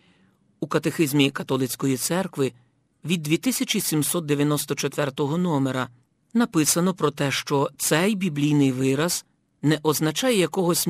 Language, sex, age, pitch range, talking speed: Ukrainian, male, 50-69, 135-170 Hz, 95 wpm